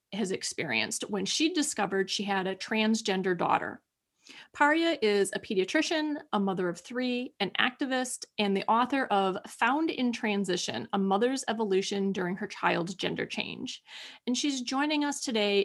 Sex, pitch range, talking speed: female, 200-260 Hz, 155 wpm